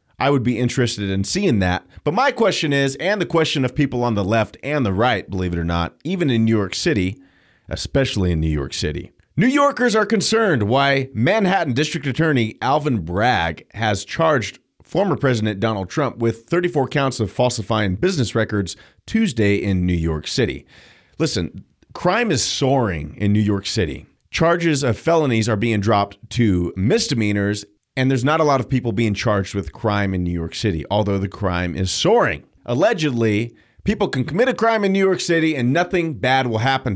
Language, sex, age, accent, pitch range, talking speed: English, male, 30-49, American, 100-145 Hz, 185 wpm